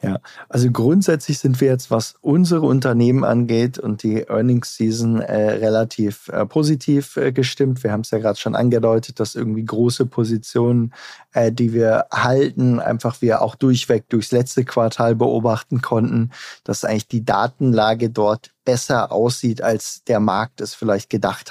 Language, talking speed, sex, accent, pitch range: German, 160 wpm, male, German, 115-130 Hz